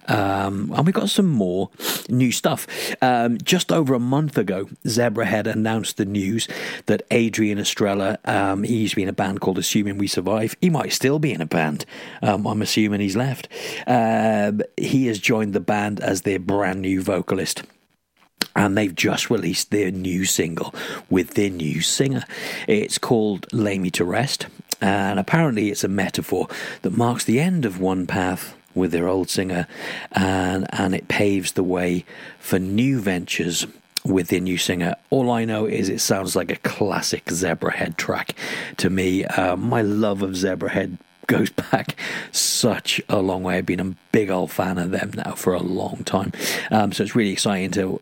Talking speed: 180 wpm